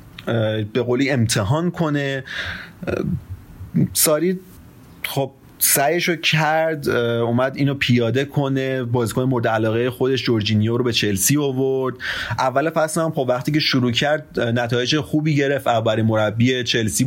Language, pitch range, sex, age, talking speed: Persian, 115-145 Hz, male, 30-49, 125 wpm